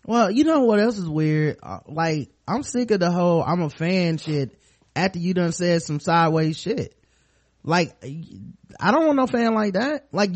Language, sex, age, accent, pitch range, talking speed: English, male, 20-39, American, 145-200 Hz, 190 wpm